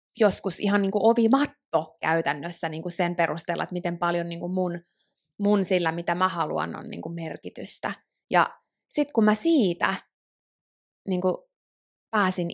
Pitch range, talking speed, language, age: 175-230 Hz, 110 wpm, Finnish, 20-39